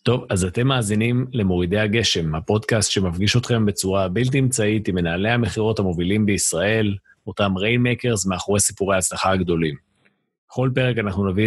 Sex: male